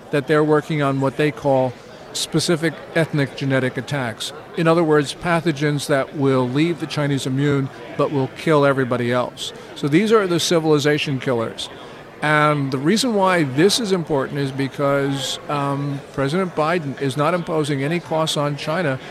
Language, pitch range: English, 135-165 Hz